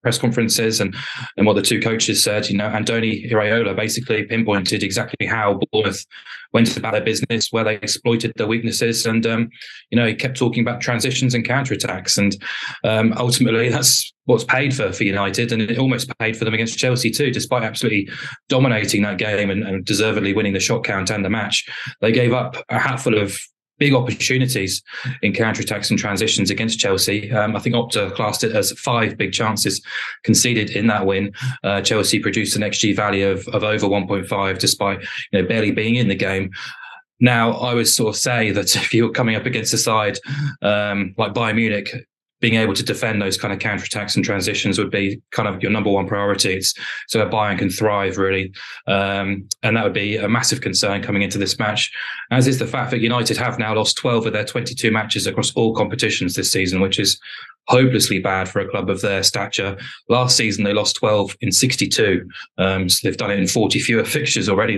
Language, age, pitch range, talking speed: English, 20-39, 100-120 Hz, 205 wpm